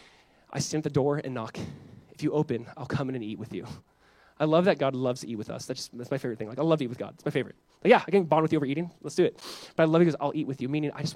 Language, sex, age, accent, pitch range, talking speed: English, male, 20-39, American, 150-205 Hz, 350 wpm